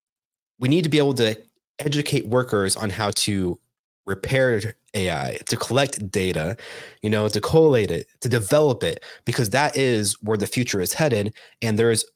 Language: English